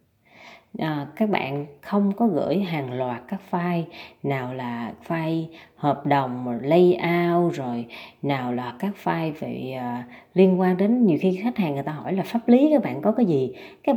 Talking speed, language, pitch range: 180 wpm, Vietnamese, 145-190 Hz